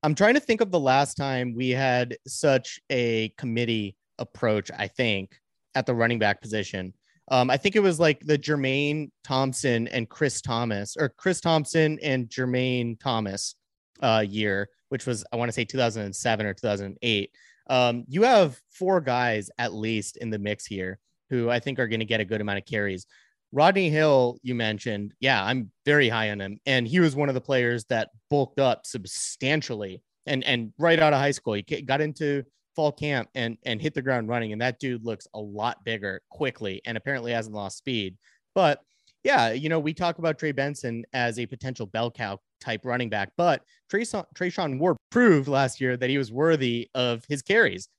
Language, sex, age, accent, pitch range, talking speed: English, male, 30-49, American, 115-145 Hz, 195 wpm